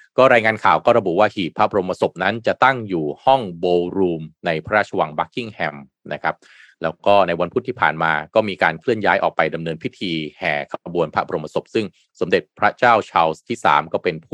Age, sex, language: 20-39, male, Thai